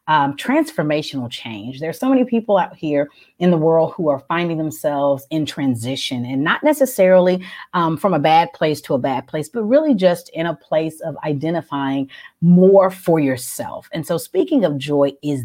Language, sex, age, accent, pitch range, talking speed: English, female, 30-49, American, 140-185 Hz, 185 wpm